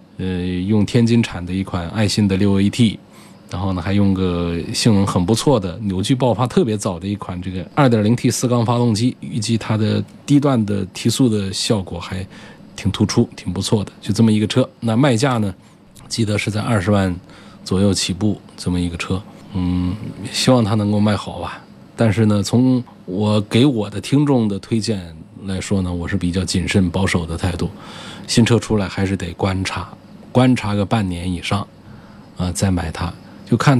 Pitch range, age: 95-120 Hz, 20-39